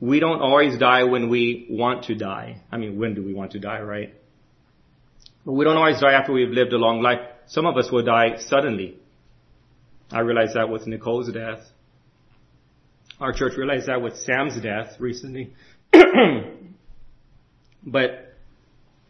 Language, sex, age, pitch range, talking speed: English, male, 40-59, 115-135 Hz, 155 wpm